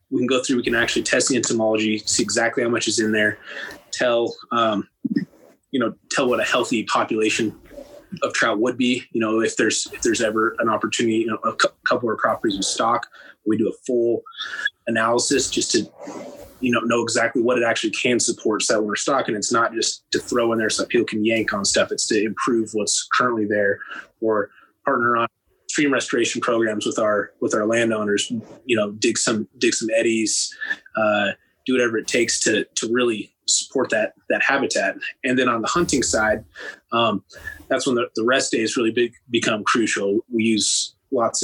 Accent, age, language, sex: American, 20-39, English, male